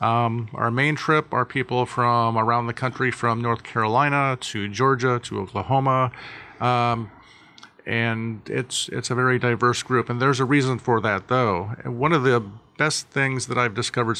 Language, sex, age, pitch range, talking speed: English, male, 50-69, 115-130 Hz, 170 wpm